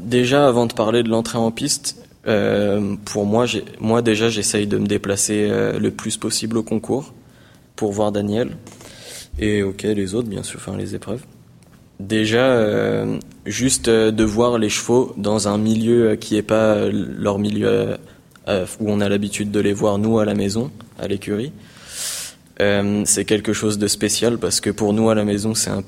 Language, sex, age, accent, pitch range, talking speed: French, male, 20-39, French, 100-115 Hz, 190 wpm